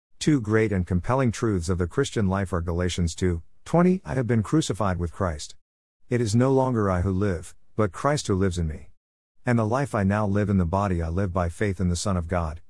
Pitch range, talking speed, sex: 90-120 Hz, 235 wpm, male